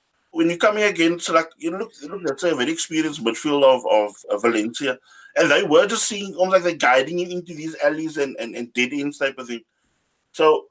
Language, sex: English, male